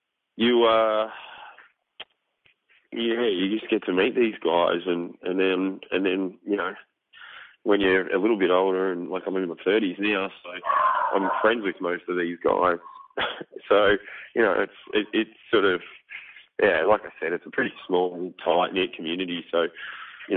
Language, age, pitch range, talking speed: English, 20-39, 90-105 Hz, 175 wpm